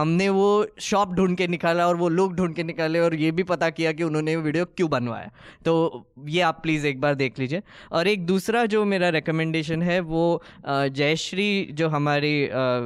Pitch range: 145-200 Hz